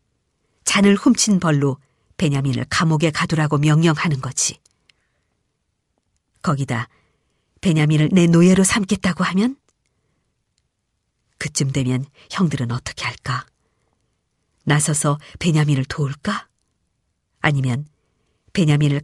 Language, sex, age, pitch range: Korean, male, 50-69, 145-220 Hz